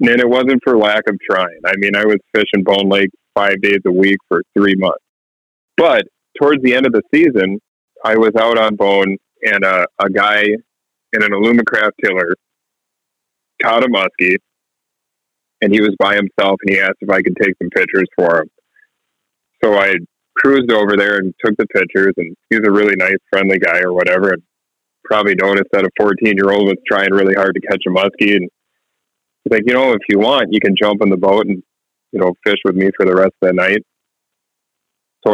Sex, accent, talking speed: male, American, 205 wpm